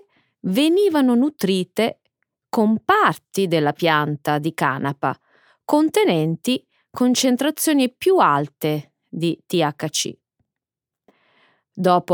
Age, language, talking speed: 30-49, Italian, 75 wpm